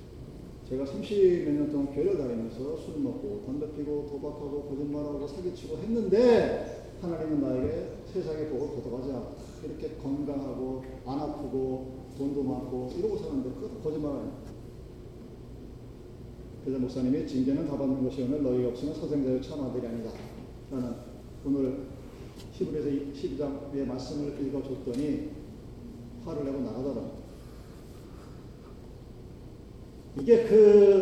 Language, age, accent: Korean, 40-59, native